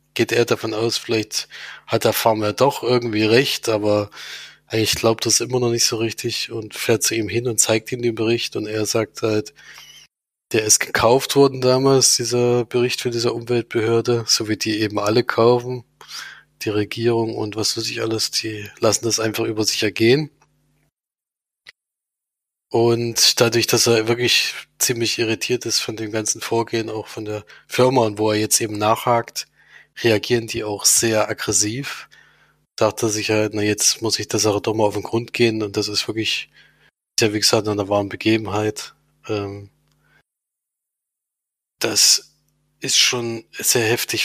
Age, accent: 20-39, German